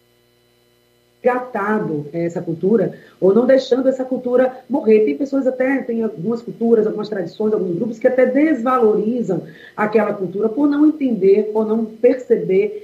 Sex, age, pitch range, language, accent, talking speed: female, 40-59, 190-230 Hz, Portuguese, Brazilian, 135 wpm